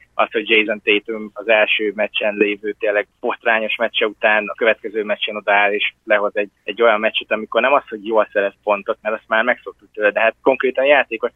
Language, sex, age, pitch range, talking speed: Hungarian, male, 20-39, 105-130 Hz, 205 wpm